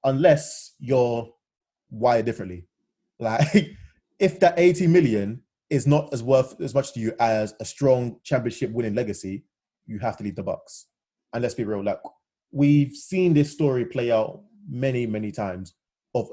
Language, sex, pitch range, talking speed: English, male, 115-145 Hz, 155 wpm